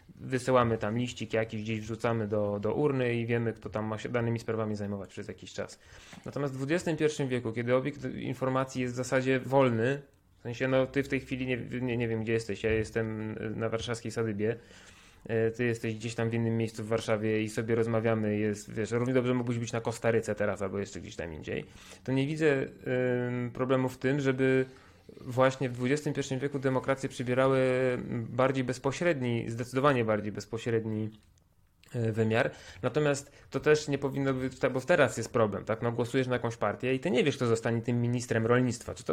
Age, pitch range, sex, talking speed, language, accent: 20-39, 115-135 Hz, male, 190 wpm, Polish, native